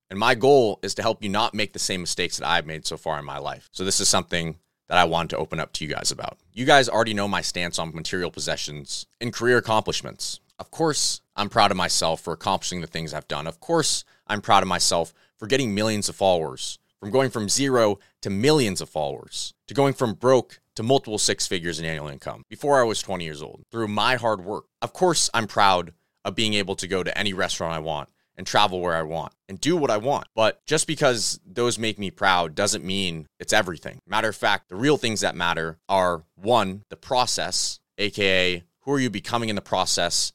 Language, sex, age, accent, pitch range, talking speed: English, male, 30-49, American, 85-115 Hz, 230 wpm